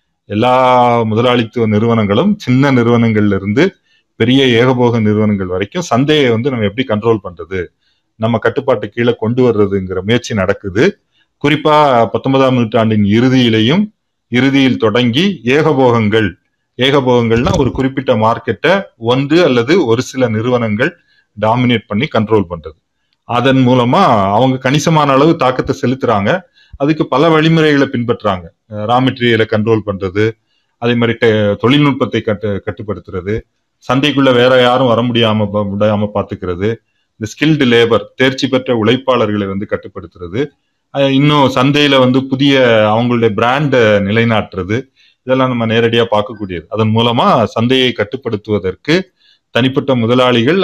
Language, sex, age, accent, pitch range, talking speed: Tamil, male, 30-49, native, 110-130 Hz, 100 wpm